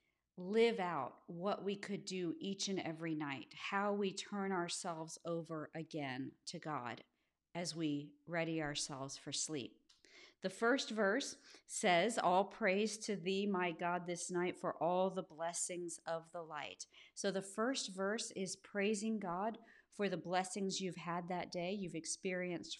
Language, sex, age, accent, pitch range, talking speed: English, female, 40-59, American, 165-200 Hz, 155 wpm